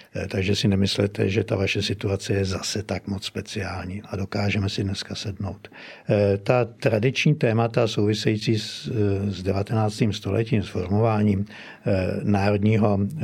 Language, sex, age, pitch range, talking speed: Slovak, male, 60-79, 100-115 Hz, 120 wpm